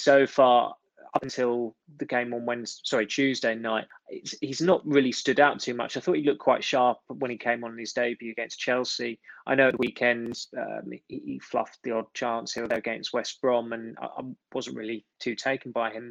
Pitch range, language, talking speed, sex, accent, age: 115-130 Hz, English, 225 wpm, male, British, 20-39